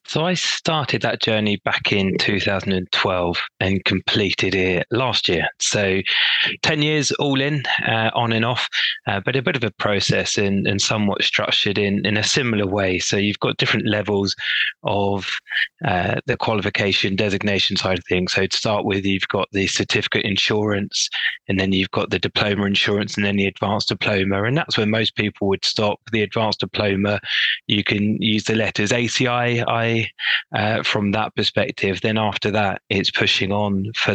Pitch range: 100-110 Hz